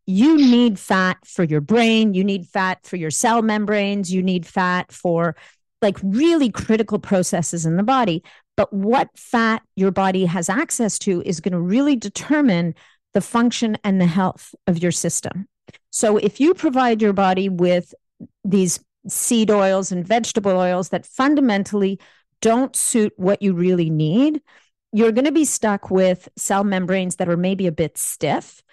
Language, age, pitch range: English, 40-59, 180-225 Hz